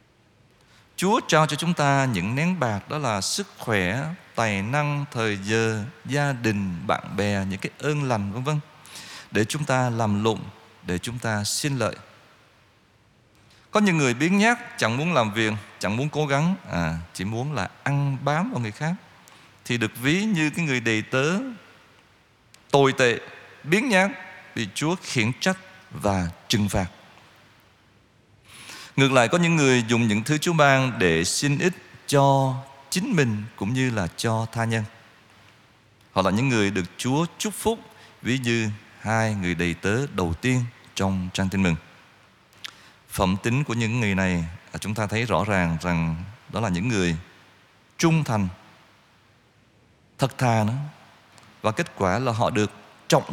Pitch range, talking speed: 105-145 Hz, 165 wpm